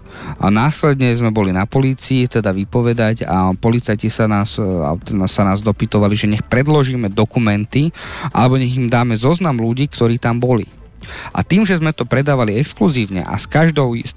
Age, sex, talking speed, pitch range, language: 30-49, male, 160 wpm, 110-140 Hz, Slovak